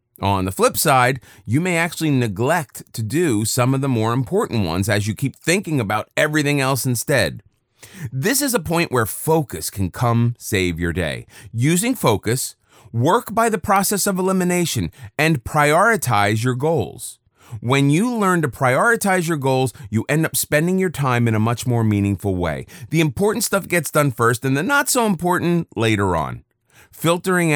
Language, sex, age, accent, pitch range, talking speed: English, male, 30-49, American, 110-155 Hz, 170 wpm